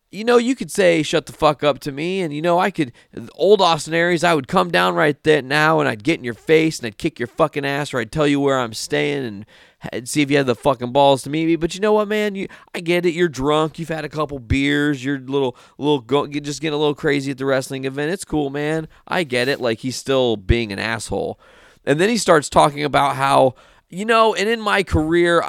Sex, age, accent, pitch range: male, 30-49, American, 120-160 Hz